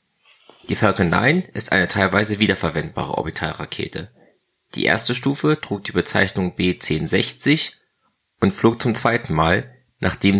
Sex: male